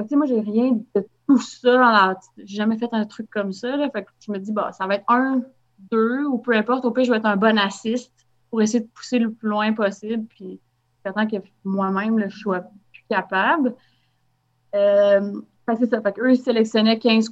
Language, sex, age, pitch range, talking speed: French, female, 30-49, 205-250 Hz, 225 wpm